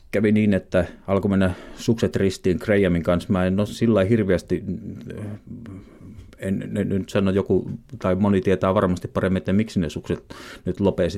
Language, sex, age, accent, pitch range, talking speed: Finnish, male, 30-49, native, 90-105 Hz, 160 wpm